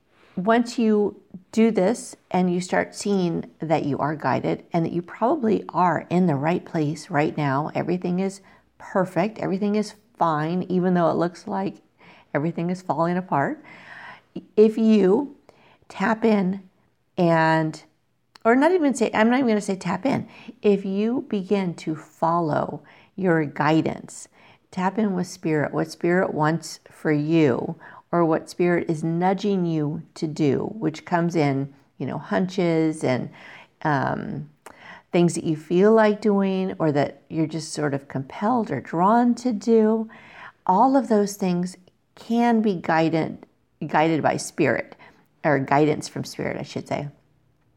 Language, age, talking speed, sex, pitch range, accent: English, 50-69, 150 wpm, female, 160-205 Hz, American